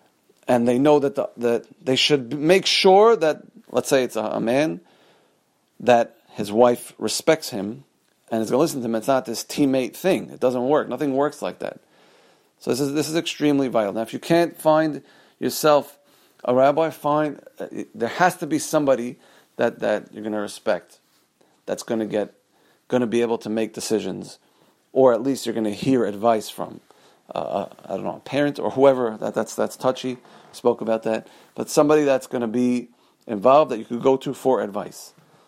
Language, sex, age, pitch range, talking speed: English, male, 40-59, 120-150 Hz, 200 wpm